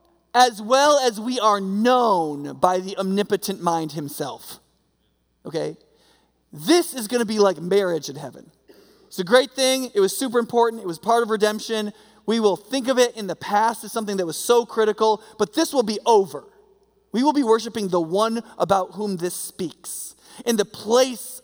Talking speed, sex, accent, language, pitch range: 185 wpm, male, American, English, 175-240 Hz